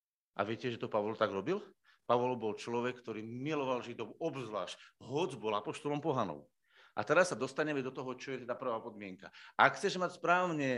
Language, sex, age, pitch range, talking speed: Slovak, male, 50-69, 125-155 Hz, 185 wpm